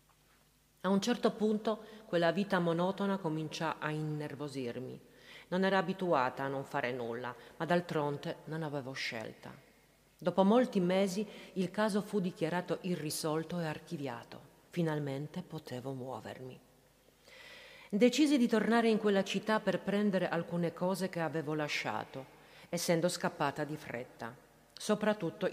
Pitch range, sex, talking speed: 145-195 Hz, female, 125 wpm